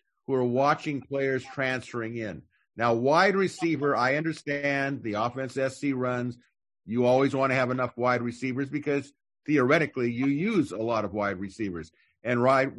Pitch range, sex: 120-140 Hz, male